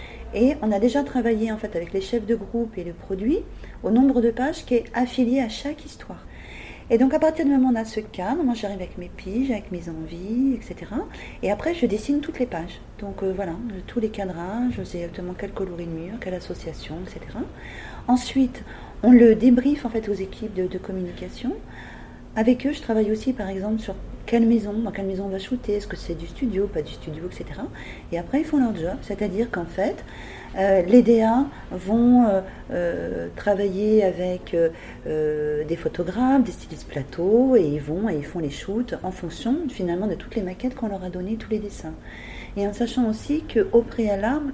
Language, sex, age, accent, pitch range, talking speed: French, female, 40-59, French, 190-245 Hz, 210 wpm